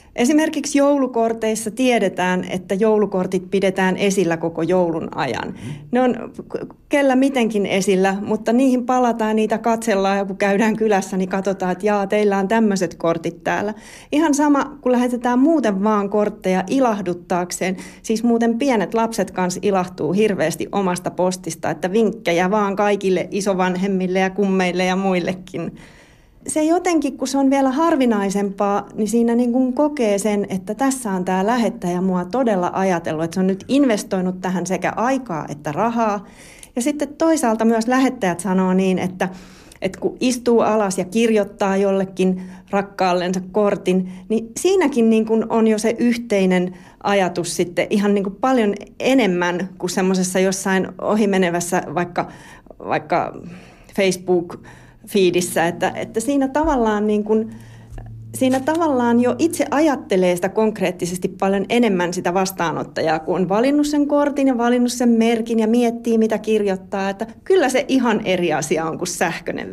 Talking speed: 145 wpm